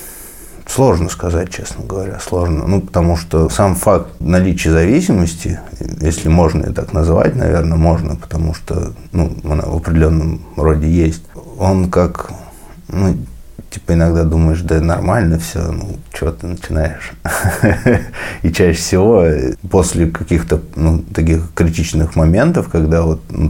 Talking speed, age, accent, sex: 130 wpm, 30-49, native, male